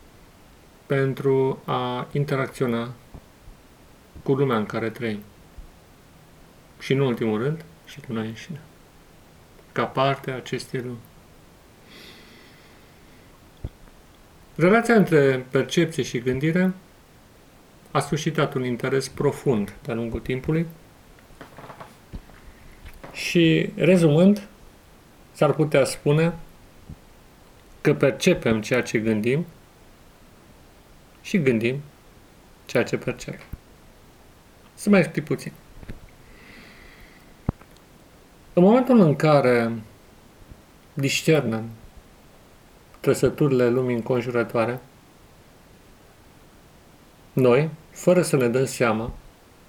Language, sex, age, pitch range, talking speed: Romanian, male, 40-59, 115-155 Hz, 80 wpm